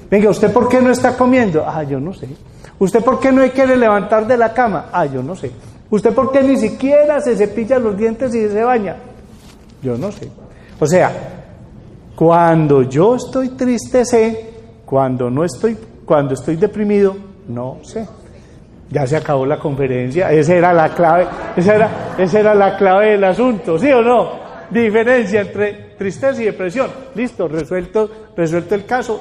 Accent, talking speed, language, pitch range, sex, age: Colombian, 175 wpm, Spanish, 160-230 Hz, male, 40-59